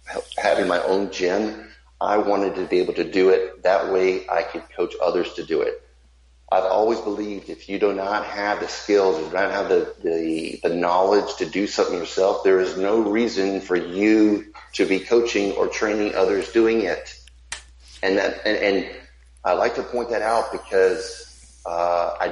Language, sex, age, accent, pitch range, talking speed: English, male, 30-49, American, 85-110 Hz, 190 wpm